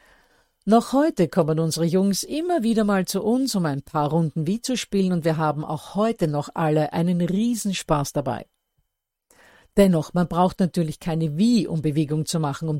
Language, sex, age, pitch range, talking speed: German, female, 50-69, 155-190 Hz, 180 wpm